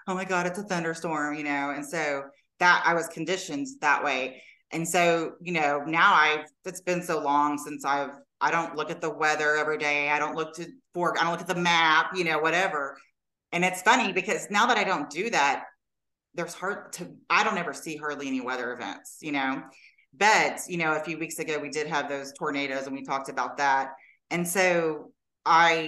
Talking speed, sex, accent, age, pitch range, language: 215 wpm, female, American, 30-49, 145-175 Hz, English